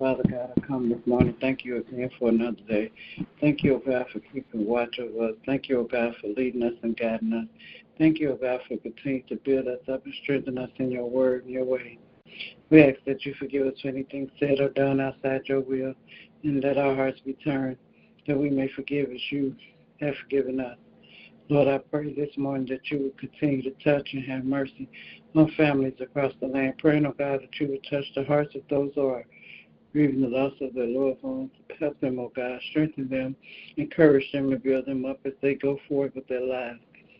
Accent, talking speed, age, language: American, 225 wpm, 60-79, English